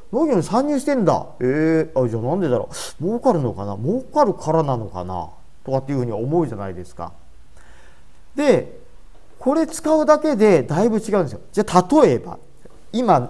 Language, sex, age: Japanese, male, 40-59